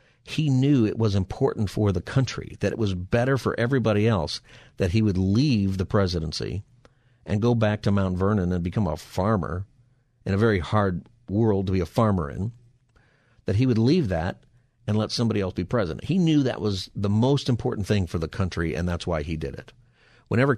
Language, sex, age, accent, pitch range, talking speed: English, male, 50-69, American, 95-125 Hz, 205 wpm